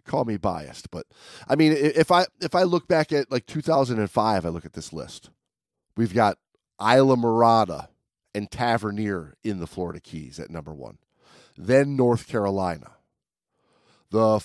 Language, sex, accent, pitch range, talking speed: English, male, American, 100-155 Hz, 155 wpm